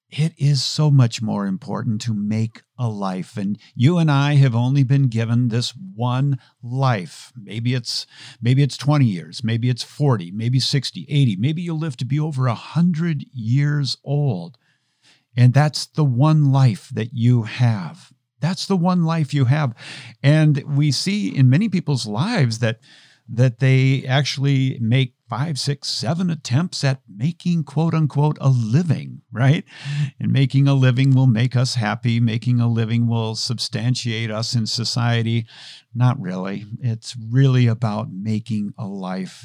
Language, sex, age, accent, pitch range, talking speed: English, male, 50-69, American, 115-145 Hz, 155 wpm